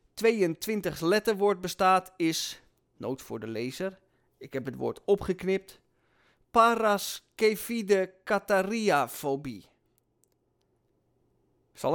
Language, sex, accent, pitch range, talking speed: Dutch, male, Dutch, 150-210 Hz, 80 wpm